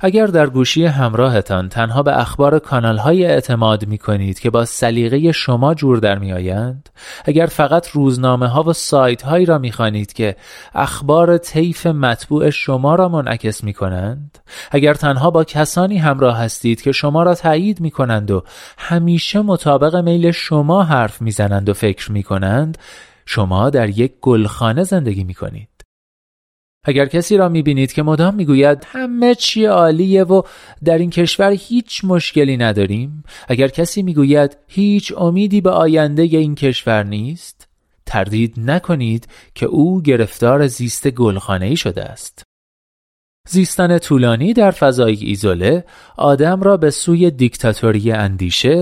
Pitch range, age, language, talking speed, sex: 110-165 Hz, 30-49, Persian, 145 wpm, male